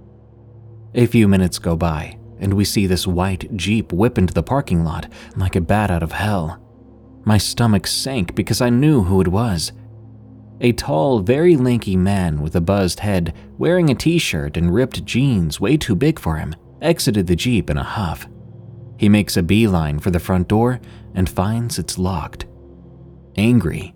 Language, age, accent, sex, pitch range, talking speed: English, 30-49, American, male, 85-115 Hz, 175 wpm